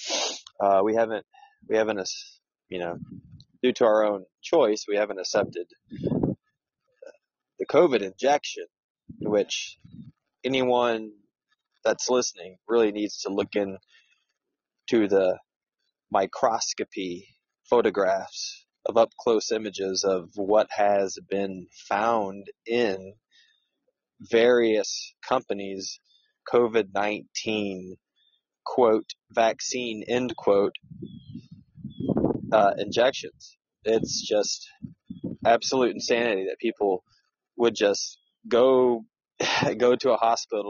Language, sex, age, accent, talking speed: English, male, 20-39, American, 95 wpm